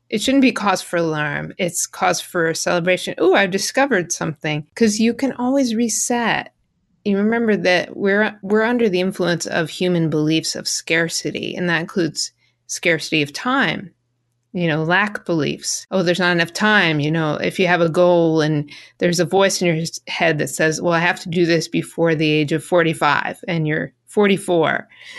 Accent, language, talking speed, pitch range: American, English, 185 wpm, 165-215 Hz